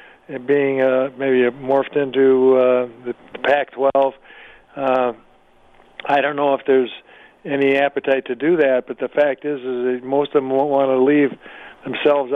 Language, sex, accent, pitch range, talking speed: English, male, American, 130-140 Hz, 170 wpm